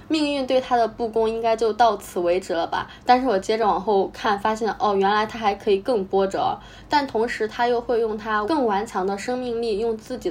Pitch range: 200-245 Hz